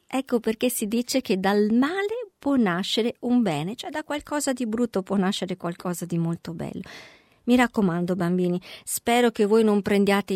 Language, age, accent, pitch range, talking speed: Italian, 50-69, native, 185-240 Hz, 175 wpm